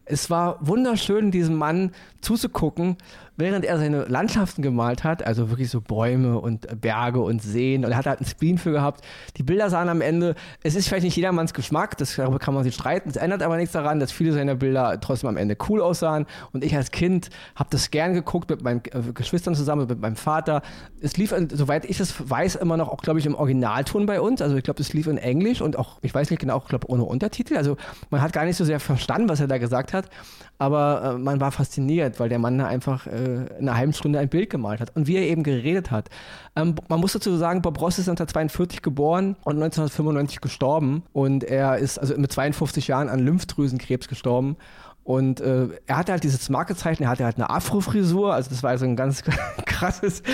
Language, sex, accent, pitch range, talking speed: German, male, German, 130-170 Hz, 215 wpm